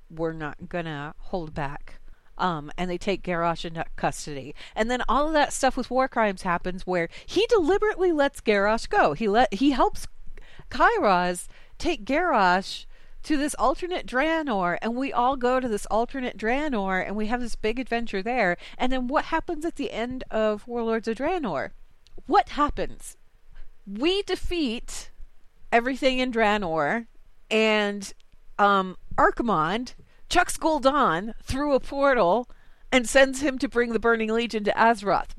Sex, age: female, 40-59